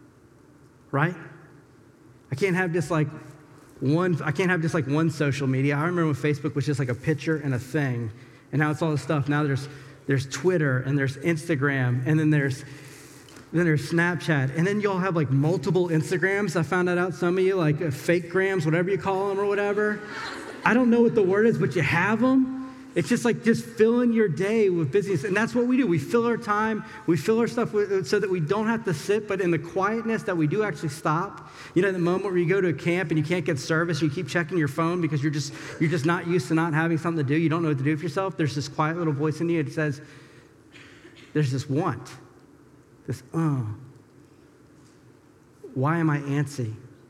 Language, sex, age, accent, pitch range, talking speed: English, male, 40-59, American, 145-185 Hz, 225 wpm